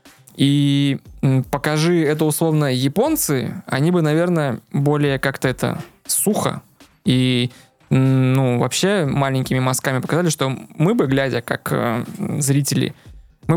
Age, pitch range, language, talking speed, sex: 20-39, 130-150 Hz, Russian, 115 wpm, male